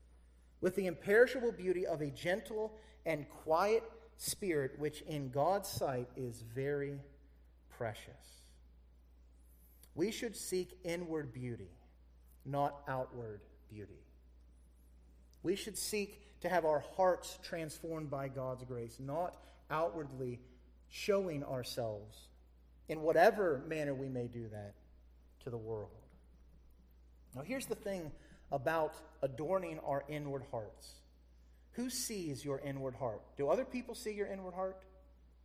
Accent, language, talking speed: American, English, 120 wpm